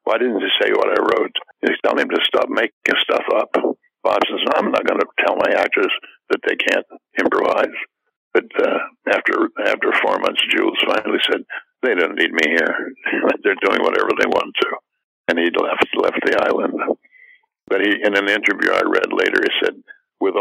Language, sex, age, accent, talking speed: English, male, 60-79, American, 185 wpm